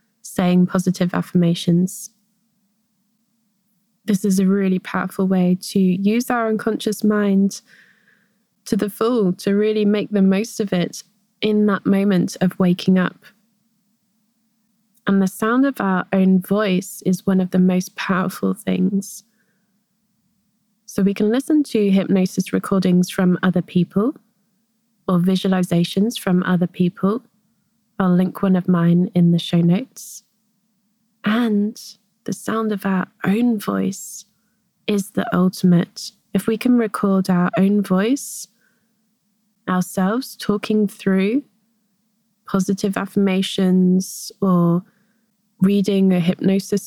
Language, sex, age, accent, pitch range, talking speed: English, female, 20-39, British, 185-220 Hz, 120 wpm